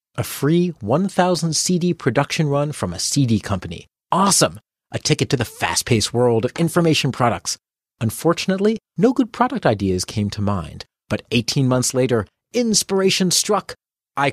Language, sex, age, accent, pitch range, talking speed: English, male, 40-59, American, 105-165 Hz, 145 wpm